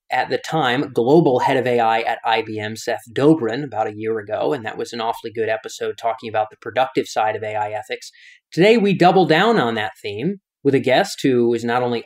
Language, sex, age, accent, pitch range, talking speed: English, male, 30-49, American, 125-175 Hz, 220 wpm